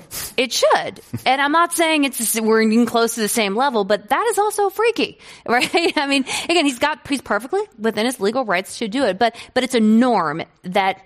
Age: 30-49